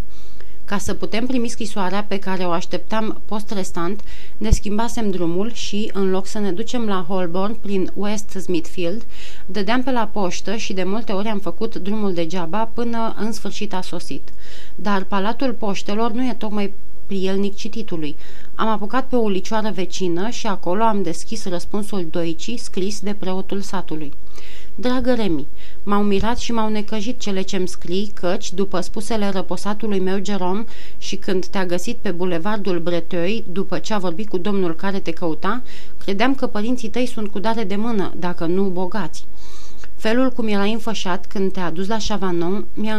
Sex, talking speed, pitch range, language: female, 165 wpm, 185-220 Hz, Romanian